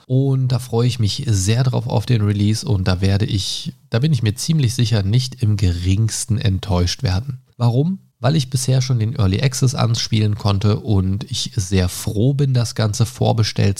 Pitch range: 95-120 Hz